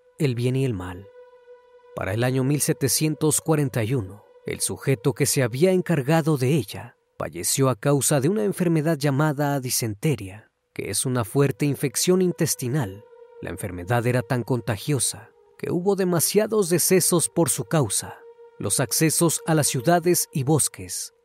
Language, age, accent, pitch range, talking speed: Spanish, 30-49, Mexican, 130-185 Hz, 140 wpm